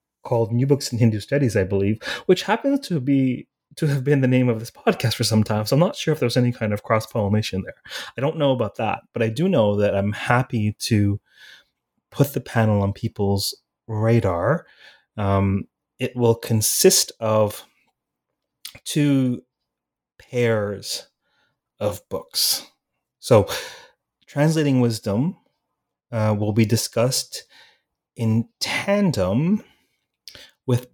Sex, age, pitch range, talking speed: male, 30-49, 100-130 Hz, 140 wpm